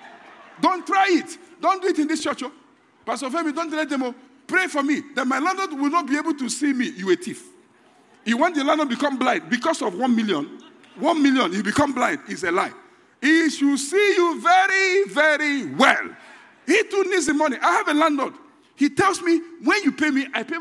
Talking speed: 220 wpm